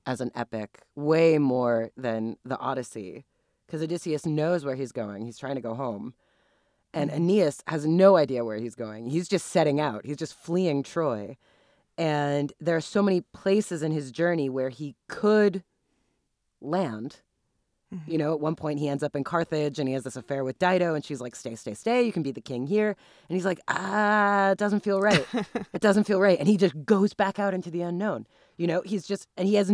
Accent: American